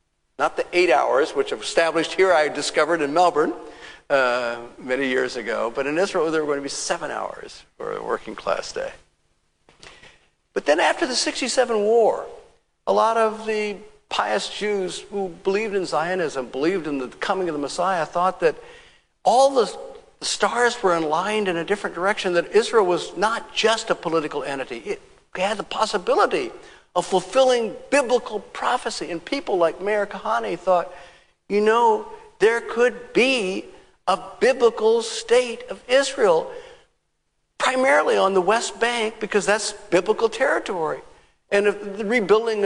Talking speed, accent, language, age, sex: 155 wpm, American, English, 50-69, male